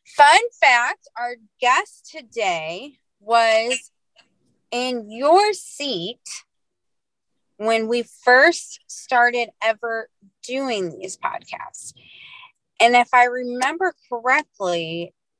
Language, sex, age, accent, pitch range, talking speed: English, female, 30-49, American, 205-285 Hz, 85 wpm